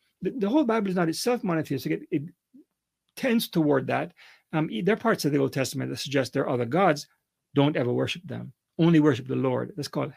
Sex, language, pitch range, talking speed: male, English, 135-160 Hz, 210 wpm